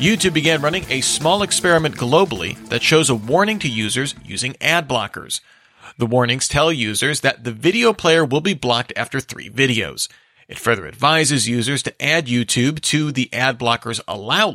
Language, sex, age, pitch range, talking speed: English, male, 40-59, 120-155 Hz, 175 wpm